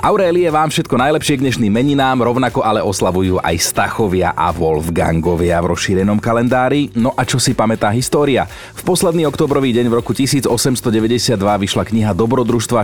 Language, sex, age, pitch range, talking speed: Slovak, male, 30-49, 95-120 Hz, 155 wpm